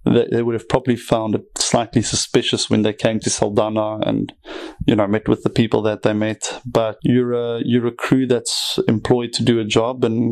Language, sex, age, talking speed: English, male, 20-39, 210 wpm